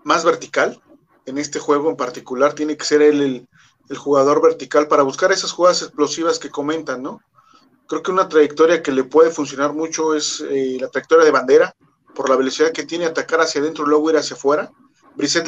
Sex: male